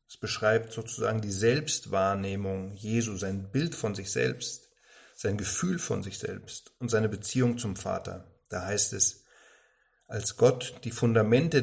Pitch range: 100-130 Hz